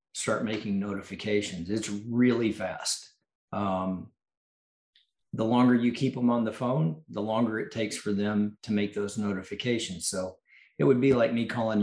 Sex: male